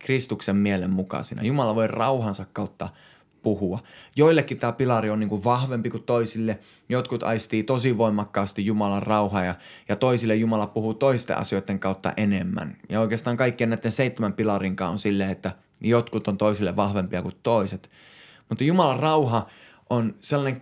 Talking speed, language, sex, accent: 150 wpm, Finnish, male, native